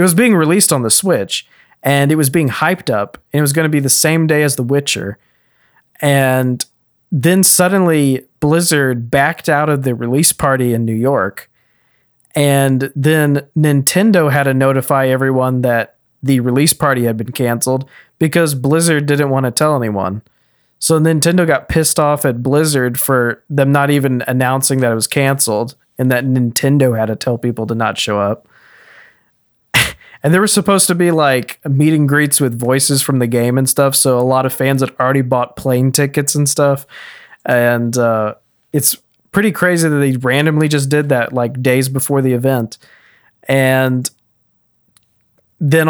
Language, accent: English, American